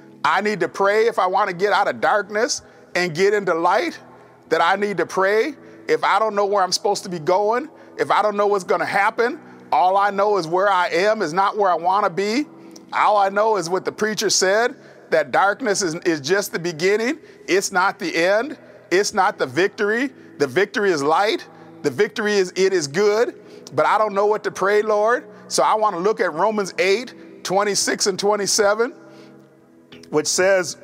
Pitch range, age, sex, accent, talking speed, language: 175-215 Hz, 40-59, male, American, 210 wpm, English